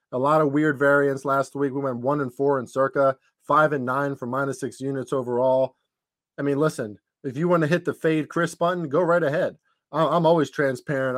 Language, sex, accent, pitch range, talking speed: English, male, American, 135-155 Hz, 215 wpm